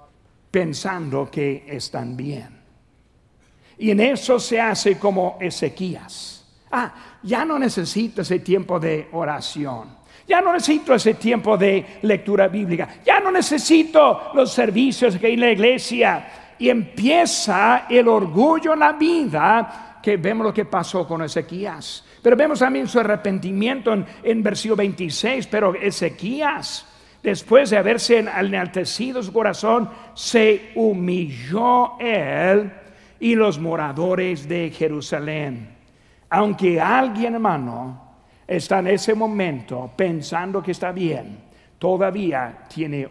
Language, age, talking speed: Spanish, 60-79, 125 wpm